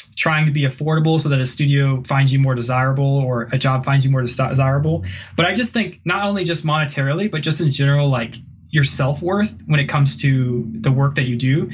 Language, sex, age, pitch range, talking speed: English, male, 20-39, 135-160 Hz, 220 wpm